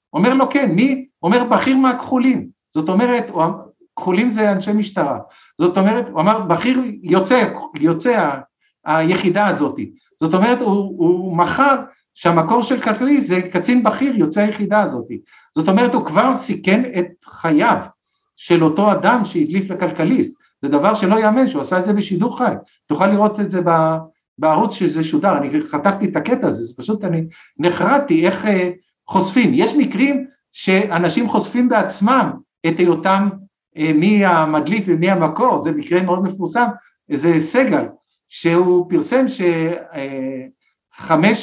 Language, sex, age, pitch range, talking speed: Hebrew, male, 50-69, 170-245 Hz, 140 wpm